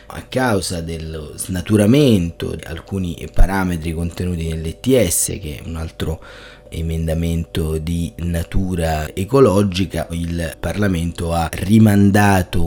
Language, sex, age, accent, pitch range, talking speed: Italian, male, 30-49, native, 85-110 Hz, 100 wpm